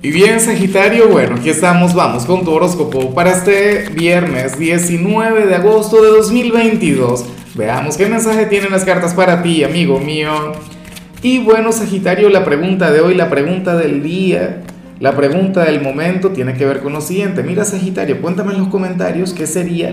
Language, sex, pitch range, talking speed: Spanish, male, 150-195 Hz, 170 wpm